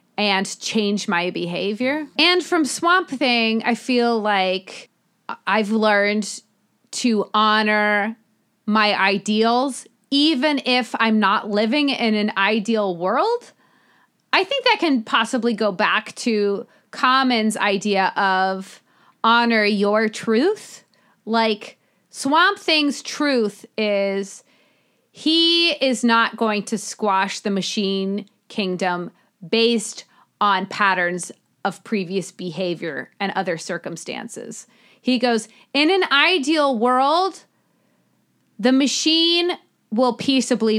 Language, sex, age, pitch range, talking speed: English, female, 30-49, 200-275 Hz, 105 wpm